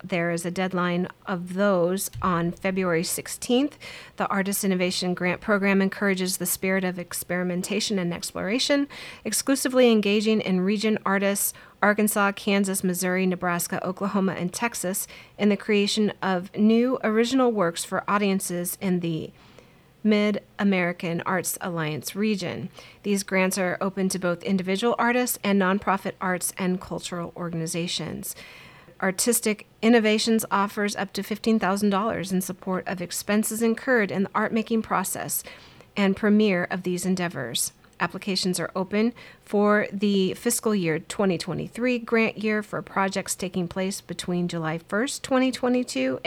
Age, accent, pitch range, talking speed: 30-49, American, 180-210 Hz, 130 wpm